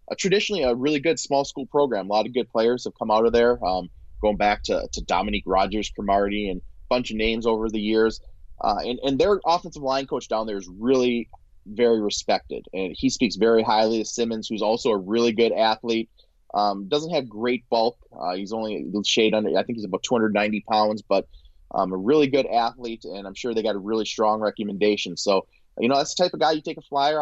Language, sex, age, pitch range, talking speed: English, male, 20-39, 110-135 Hz, 225 wpm